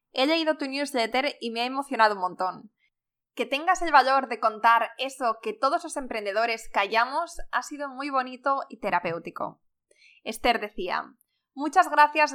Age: 20-39